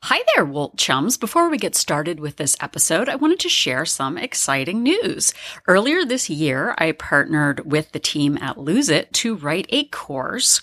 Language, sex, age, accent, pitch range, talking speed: English, female, 30-49, American, 150-225 Hz, 185 wpm